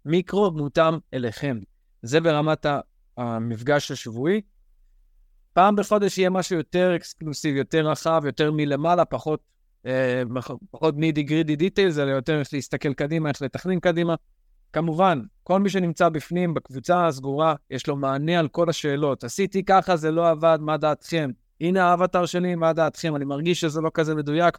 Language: Hebrew